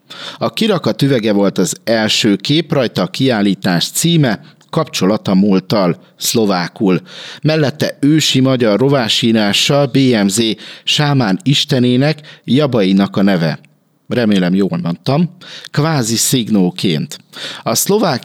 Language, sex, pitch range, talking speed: Hungarian, male, 105-145 Hz, 100 wpm